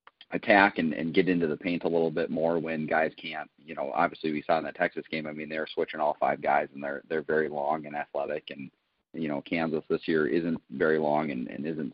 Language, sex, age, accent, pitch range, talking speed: English, male, 30-49, American, 70-80 Hz, 245 wpm